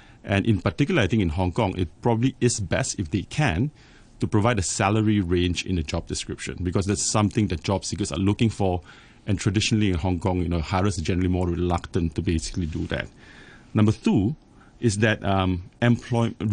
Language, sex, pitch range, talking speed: English, male, 95-115 Hz, 200 wpm